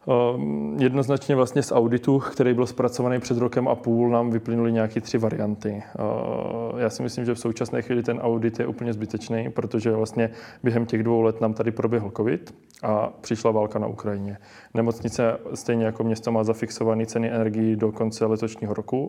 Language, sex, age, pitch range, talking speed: Czech, male, 20-39, 110-115 Hz, 180 wpm